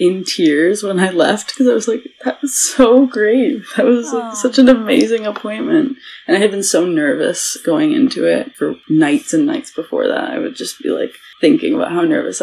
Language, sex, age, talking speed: English, female, 20-39, 210 wpm